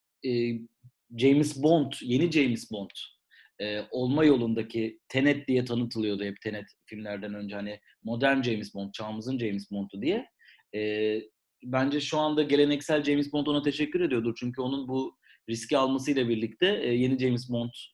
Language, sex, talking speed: Turkish, male, 140 wpm